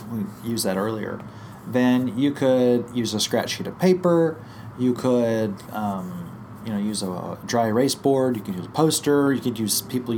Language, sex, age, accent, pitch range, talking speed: English, male, 30-49, American, 115-150 Hz, 190 wpm